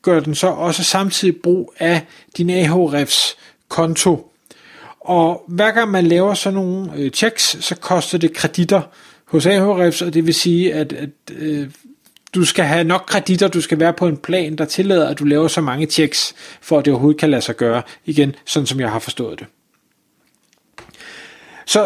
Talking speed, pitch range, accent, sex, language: 185 wpm, 155-185 Hz, native, male, Danish